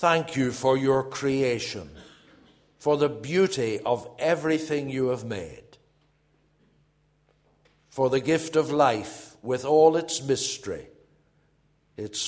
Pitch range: 120-150 Hz